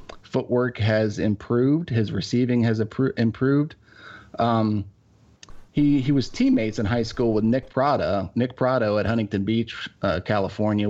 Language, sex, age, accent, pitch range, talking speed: English, male, 30-49, American, 105-125 Hz, 140 wpm